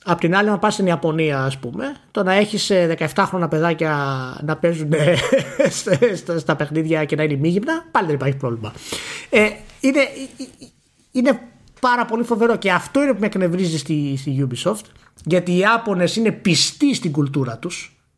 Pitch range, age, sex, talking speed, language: 155-225 Hz, 30-49, male, 160 wpm, Greek